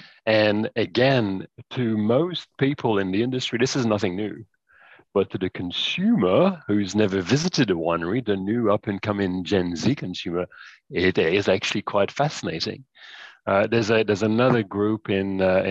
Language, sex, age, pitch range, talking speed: English, male, 30-49, 95-115 Hz, 155 wpm